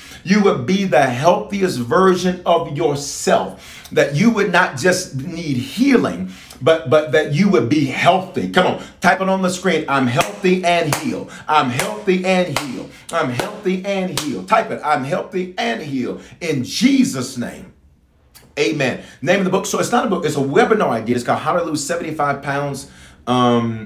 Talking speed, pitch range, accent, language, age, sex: 185 wpm, 120-180 Hz, American, English, 40-59, male